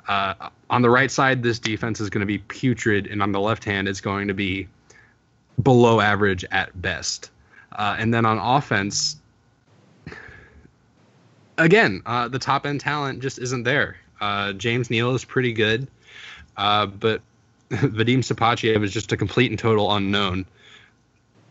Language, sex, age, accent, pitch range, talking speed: English, male, 20-39, American, 100-115 Hz, 155 wpm